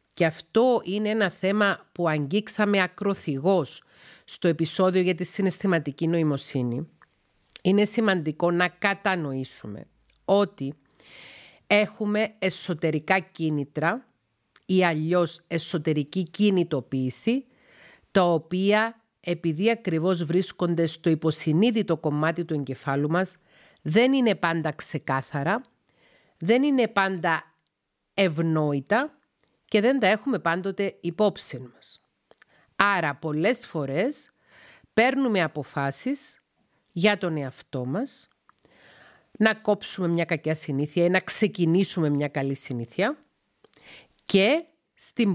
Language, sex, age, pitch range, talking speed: Greek, female, 50-69, 155-205 Hz, 100 wpm